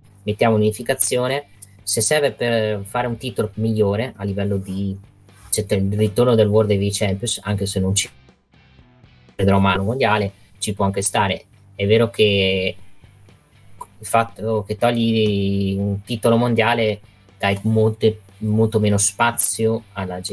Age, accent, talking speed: 20-39, native, 135 wpm